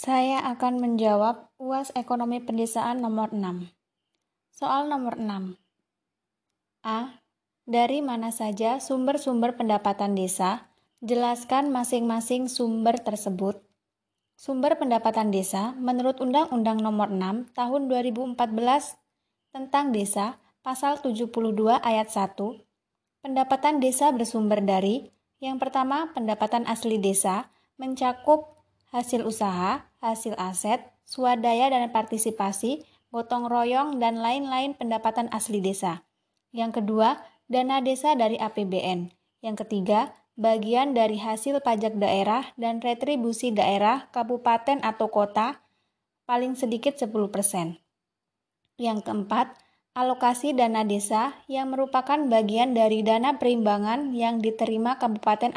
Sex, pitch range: female, 215-255 Hz